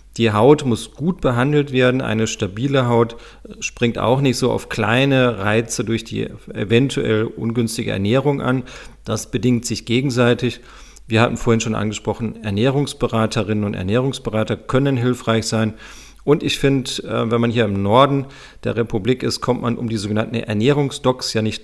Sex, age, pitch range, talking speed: male, 40-59, 110-125 Hz, 155 wpm